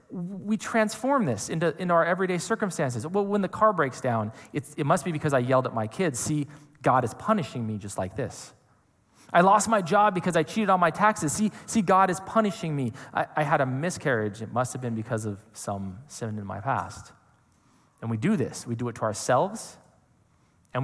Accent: American